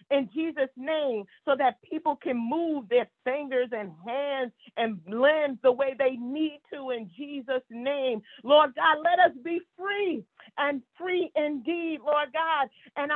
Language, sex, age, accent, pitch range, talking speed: English, female, 40-59, American, 275-330 Hz, 155 wpm